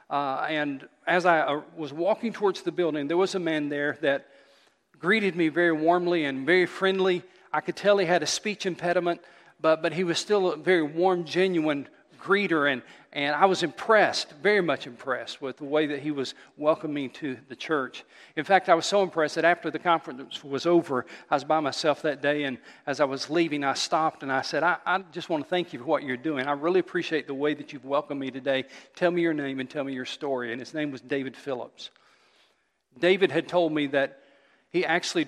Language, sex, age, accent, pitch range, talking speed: English, male, 40-59, American, 130-170 Hz, 220 wpm